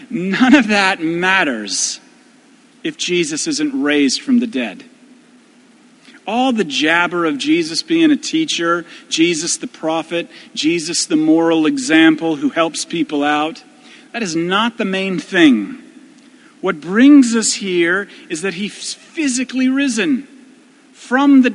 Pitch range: 205-285 Hz